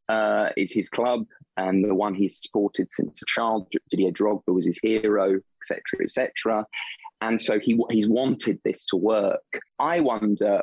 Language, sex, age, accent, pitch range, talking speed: English, male, 20-39, British, 100-110 Hz, 175 wpm